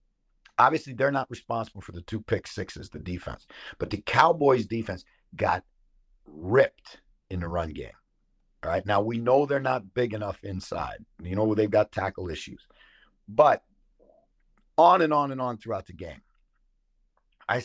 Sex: male